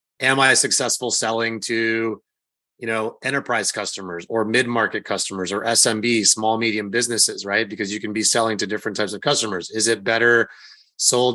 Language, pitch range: English, 110-135 Hz